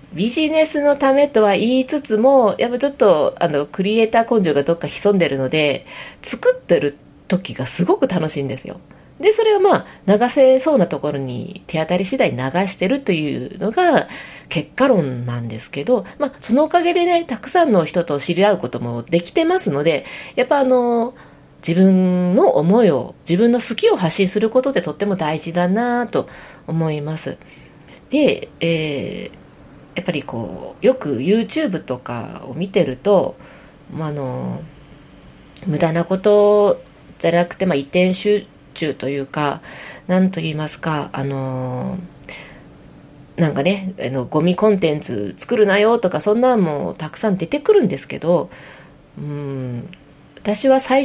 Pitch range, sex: 150-250 Hz, female